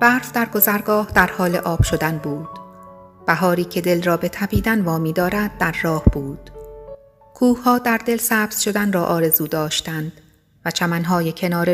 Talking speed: 155 wpm